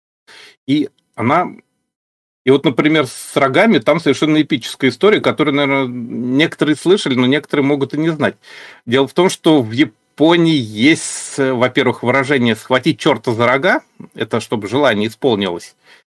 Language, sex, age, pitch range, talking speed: Russian, male, 40-59, 120-155 Hz, 140 wpm